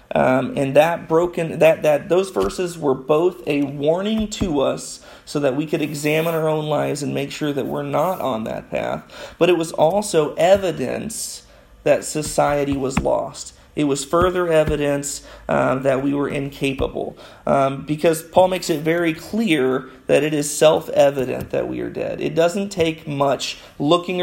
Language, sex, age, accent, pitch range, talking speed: English, male, 40-59, American, 140-160 Hz, 170 wpm